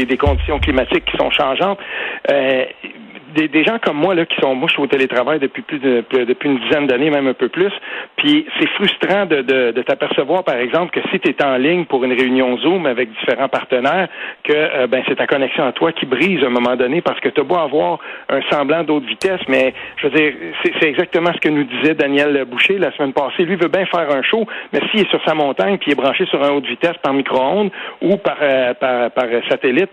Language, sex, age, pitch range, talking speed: French, male, 60-79, 130-185 Hz, 235 wpm